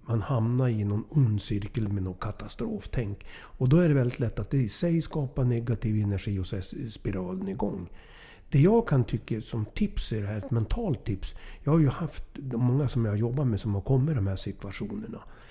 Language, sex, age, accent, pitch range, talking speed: English, male, 60-79, Swedish, 105-140 Hz, 210 wpm